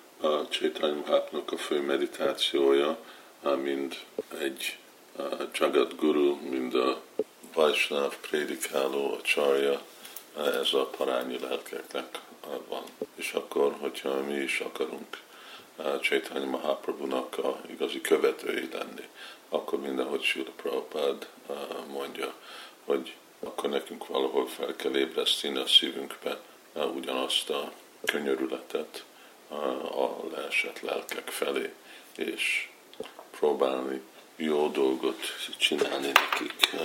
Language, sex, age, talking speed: Hungarian, male, 50-69, 100 wpm